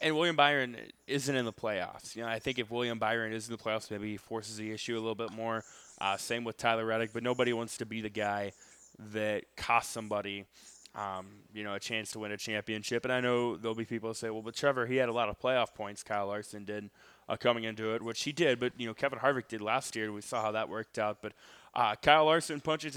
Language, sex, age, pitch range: Thai, male, 20-39, 110-130 Hz